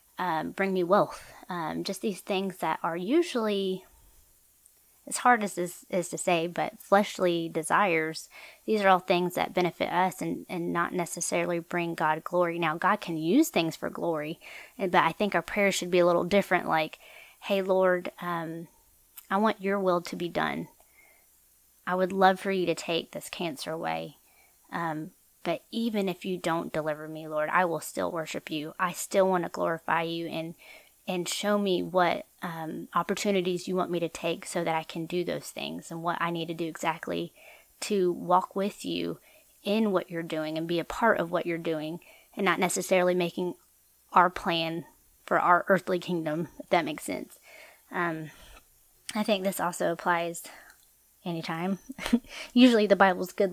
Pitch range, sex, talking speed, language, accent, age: 165-190 Hz, female, 180 wpm, English, American, 30-49